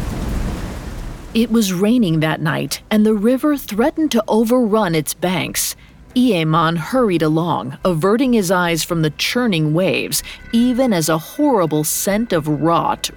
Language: English